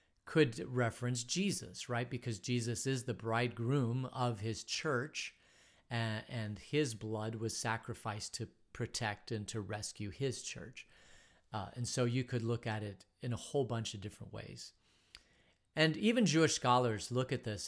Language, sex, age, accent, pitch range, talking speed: English, male, 40-59, American, 110-130 Hz, 155 wpm